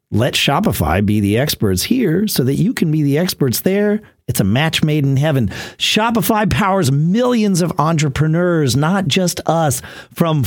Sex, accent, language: male, American, English